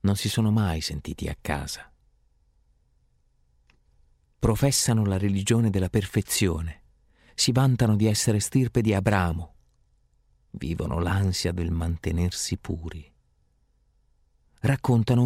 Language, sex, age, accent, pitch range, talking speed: Italian, male, 40-59, native, 80-125 Hz, 100 wpm